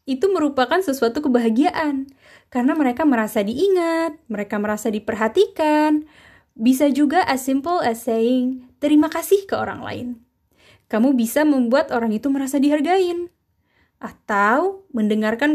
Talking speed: 120 wpm